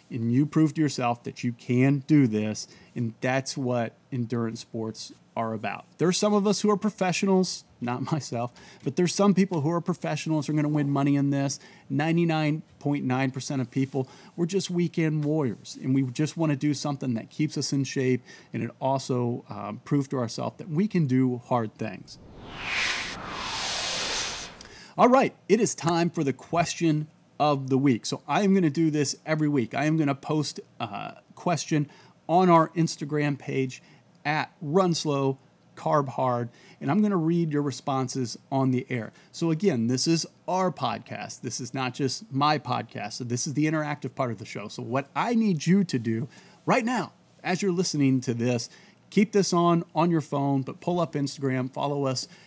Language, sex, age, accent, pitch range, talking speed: English, male, 30-49, American, 125-165 Hz, 190 wpm